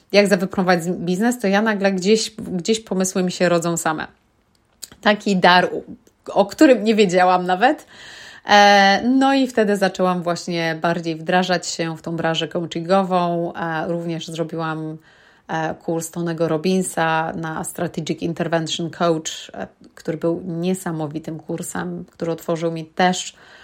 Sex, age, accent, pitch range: female, 30-49, native, 170-195 Hz